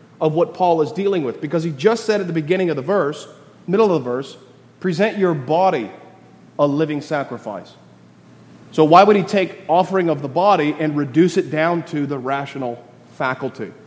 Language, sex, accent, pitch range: English, male, American, 155-200 Hz